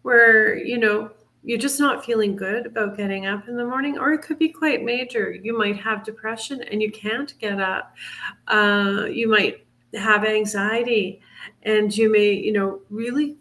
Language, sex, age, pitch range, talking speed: English, female, 40-59, 200-230 Hz, 180 wpm